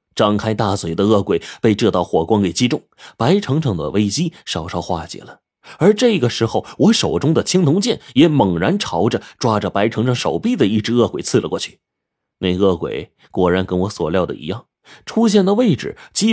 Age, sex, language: 30-49, male, Chinese